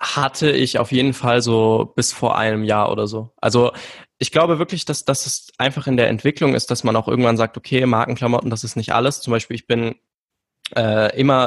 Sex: male